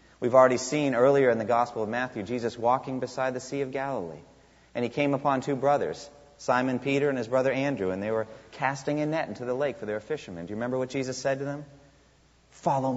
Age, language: 30-49, English